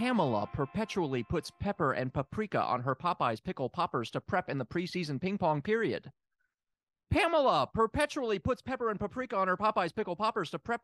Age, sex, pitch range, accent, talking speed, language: 30-49, male, 130-220 Hz, American, 170 wpm, English